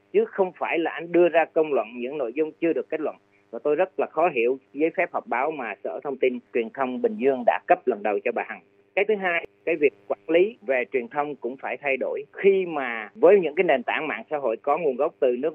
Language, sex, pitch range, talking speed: Vietnamese, male, 145-200 Hz, 270 wpm